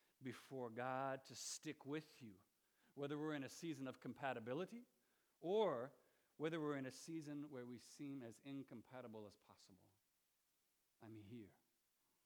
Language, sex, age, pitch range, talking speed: English, male, 40-59, 110-140 Hz, 135 wpm